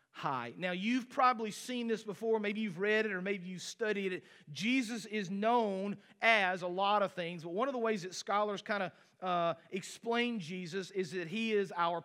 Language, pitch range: English, 175-220 Hz